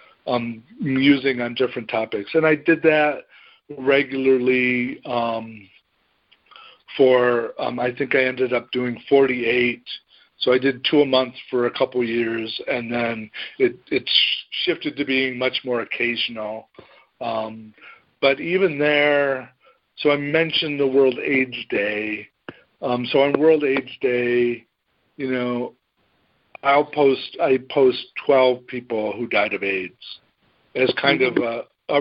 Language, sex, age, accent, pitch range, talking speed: English, male, 50-69, American, 120-145 Hz, 135 wpm